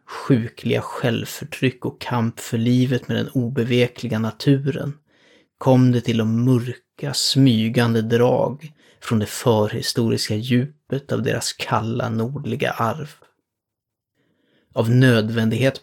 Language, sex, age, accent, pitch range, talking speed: Swedish, male, 30-49, native, 115-130 Hz, 105 wpm